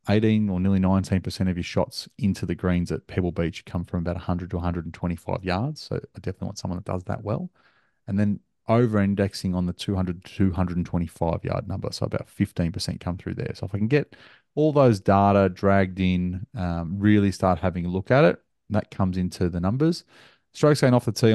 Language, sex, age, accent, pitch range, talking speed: English, male, 30-49, Australian, 90-105 Hz, 205 wpm